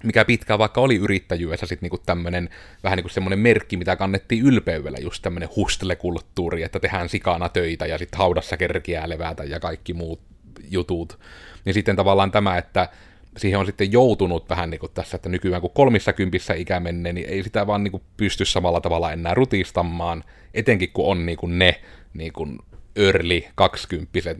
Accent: native